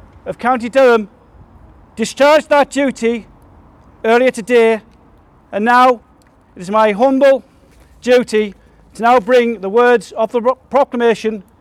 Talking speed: 120 wpm